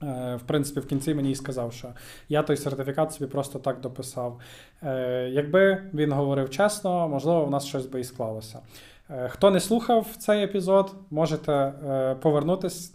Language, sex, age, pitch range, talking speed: Ukrainian, male, 20-39, 135-165 Hz, 155 wpm